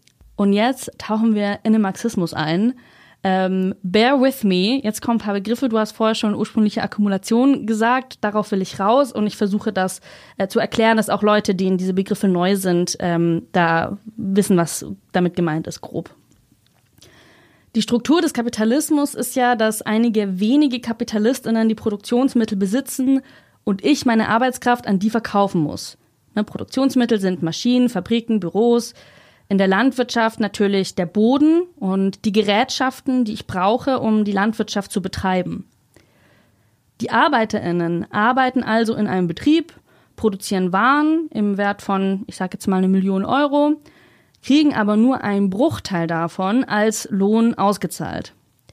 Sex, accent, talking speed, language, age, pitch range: female, German, 145 wpm, German, 20-39, 190-235 Hz